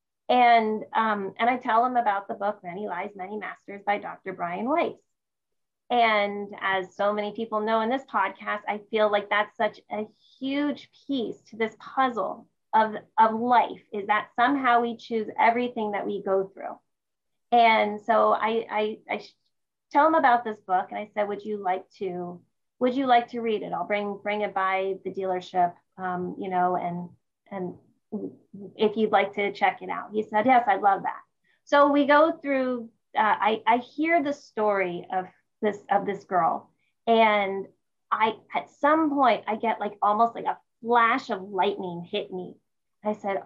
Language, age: English, 30-49